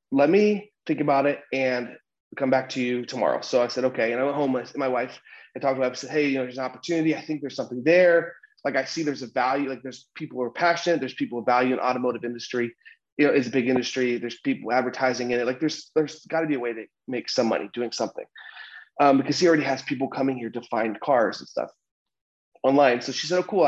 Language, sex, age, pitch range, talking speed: English, male, 30-49, 125-155 Hz, 260 wpm